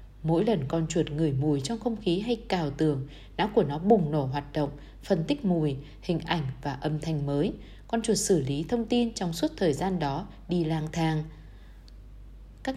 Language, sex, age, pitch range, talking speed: Vietnamese, female, 20-39, 155-215 Hz, 200 wpm